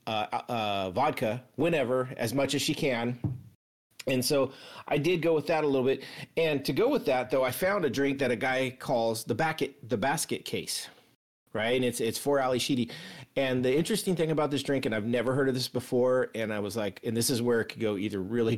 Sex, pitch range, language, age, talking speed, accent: male, 110-145 Hz, English, 40-59, 235 wpm, American